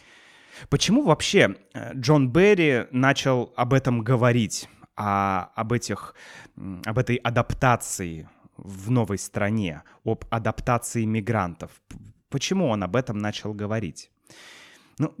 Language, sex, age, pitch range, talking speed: Russian, male, 20-39, 110-145 Hz, 100 wpm